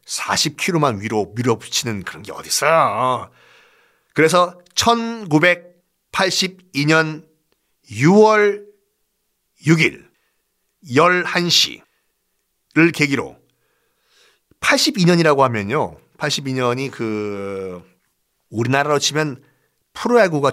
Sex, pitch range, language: male, 135-195 Hz, Korean